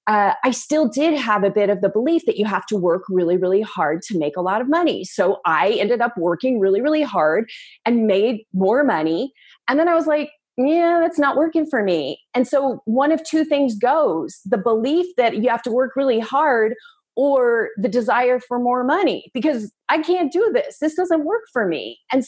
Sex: female